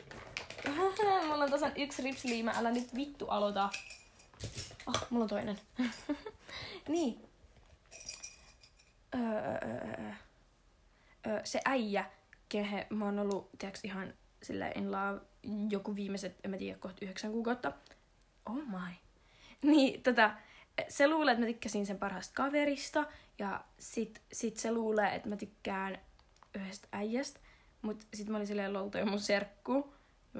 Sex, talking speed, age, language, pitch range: female, 130 wpm, 20-39, Finnish, 210-290 Hz